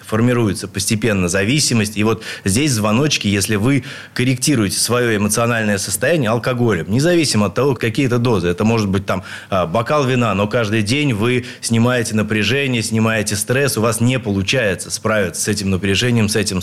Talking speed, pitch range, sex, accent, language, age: 160 wpm, 100-125 Hz, male, native, Russian, 20-39